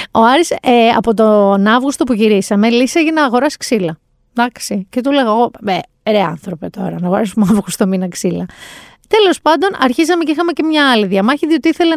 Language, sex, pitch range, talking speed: Greek, female, 210-275 Hz, 185 wpm